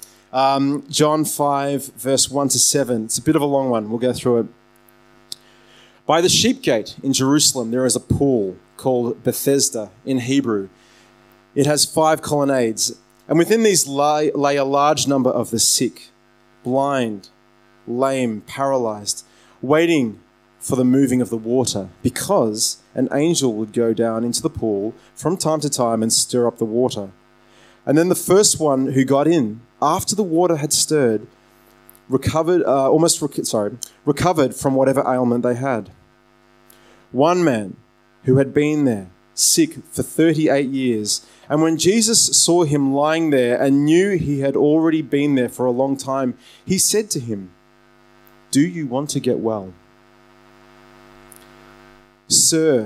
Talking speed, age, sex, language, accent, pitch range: 155 wpm, 30-49, male, English, Australian, 110-145 Hz